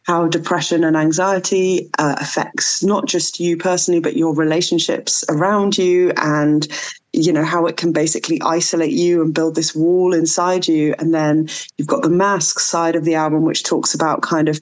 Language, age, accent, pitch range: English, 20-39, British, 160-180 Hz